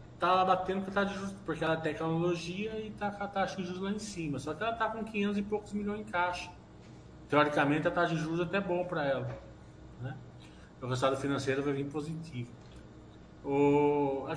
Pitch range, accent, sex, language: 130-195 Hz, Brazilian, male, Portuguese